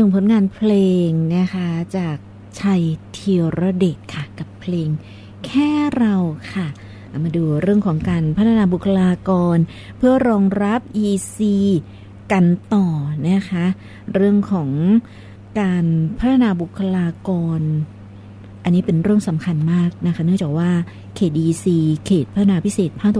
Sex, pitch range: female, 160-200 Hz